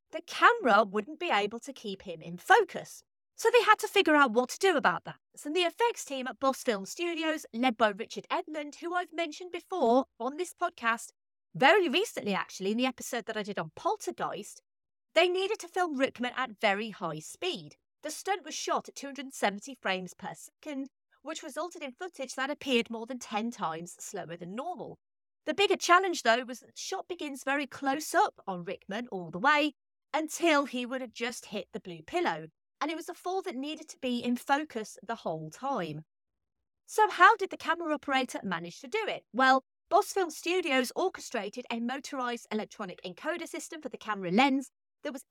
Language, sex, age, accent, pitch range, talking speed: English, female, 30-49, British, 225-330 Hz, 195 wpm